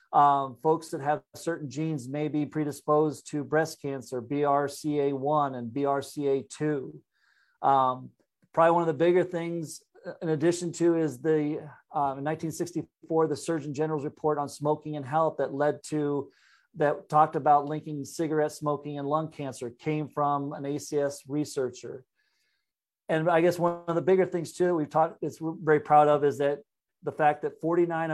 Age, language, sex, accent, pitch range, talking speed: 40-59, English, male, American, 140-160 Hz, 165 wpm